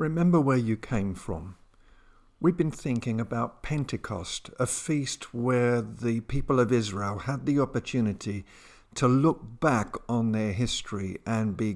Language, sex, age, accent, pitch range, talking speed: English, male, 50-69, British, 100-135 Hz, 145 wpm